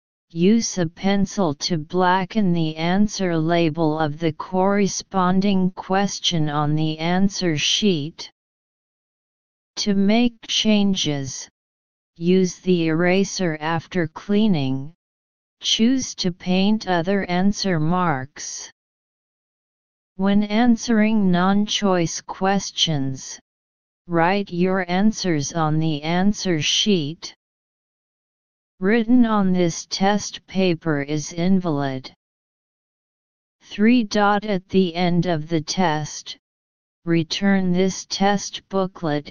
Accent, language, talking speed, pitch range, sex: American, English, 90 wpm, 160-200 Hz, female